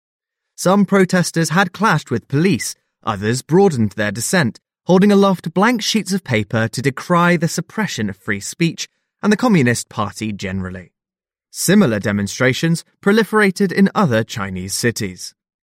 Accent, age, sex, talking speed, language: British, 20-39, male, 135 wpm, English